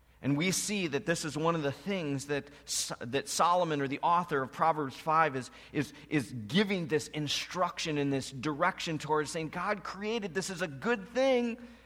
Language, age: English, 40-59